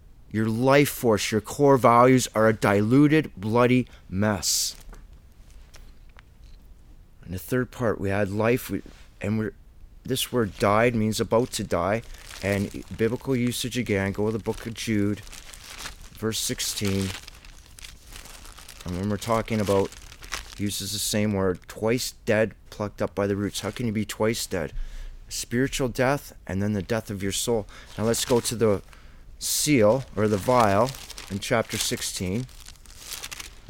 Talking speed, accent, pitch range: 150 wpm, American, 95-115 Hz